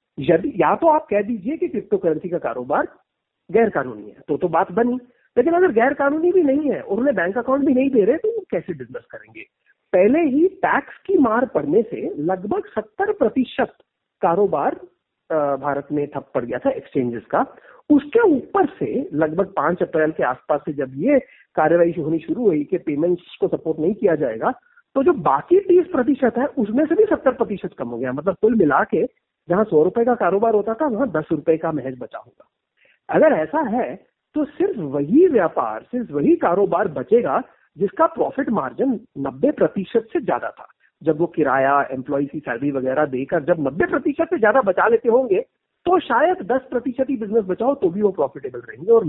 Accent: native